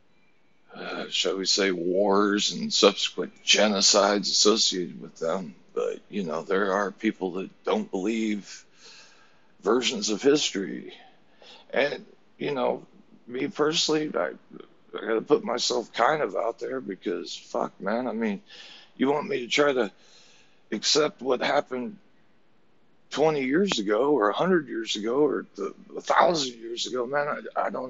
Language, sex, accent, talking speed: English, male, American, 145 wpm